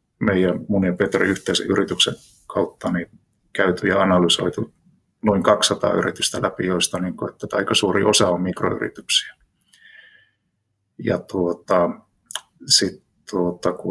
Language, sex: Finnish, male